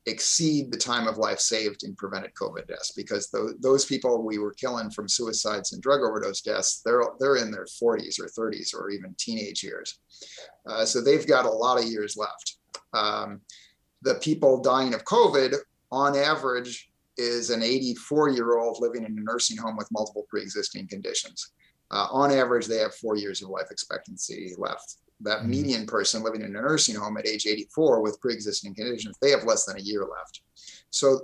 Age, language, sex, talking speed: 30-49, English, male, 185 wpm